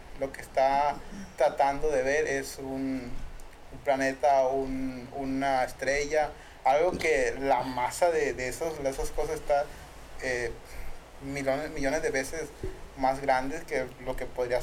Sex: male